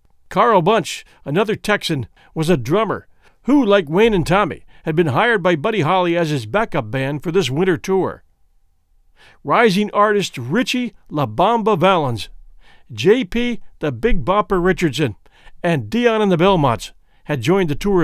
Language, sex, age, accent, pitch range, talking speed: English, male, 50-69, American, 145-205 Hz, 155 wpm